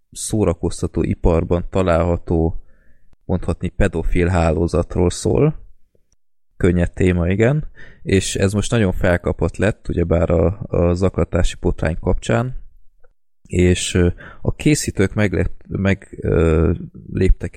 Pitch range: 85-100 Hz